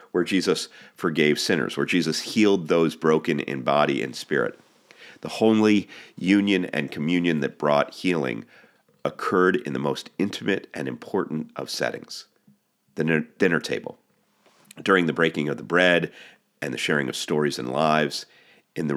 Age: 40-59